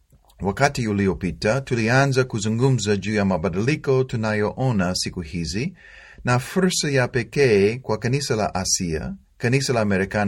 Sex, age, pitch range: male, 50-69, 90-130 Hz